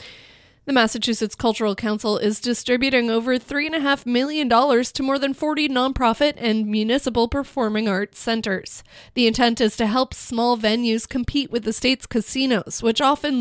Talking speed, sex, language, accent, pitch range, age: 150 wpm, female, English, American, 210-255 Hz, 30-49